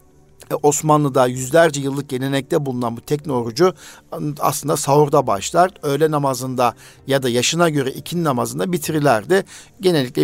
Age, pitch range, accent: 50-69, 130-160 Hz, native